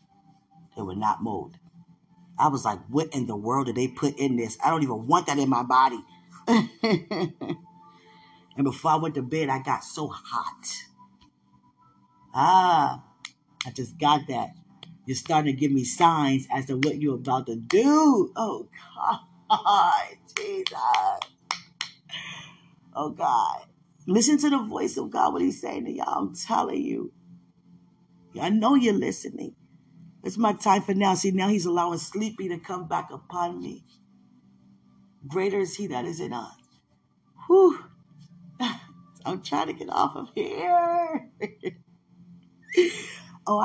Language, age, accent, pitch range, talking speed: English, 20-39, American, 145-195 Hz, 145 wpm